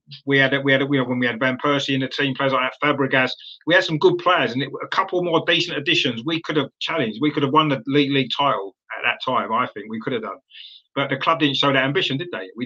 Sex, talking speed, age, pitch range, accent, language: male, 280 wpm, 30-49, 135-185 Hz, British, English